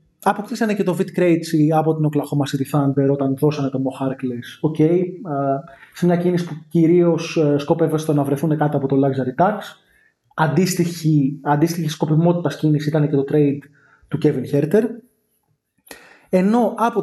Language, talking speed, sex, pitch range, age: Greek, 145 wpm, male, 140-180 Hz, 20-39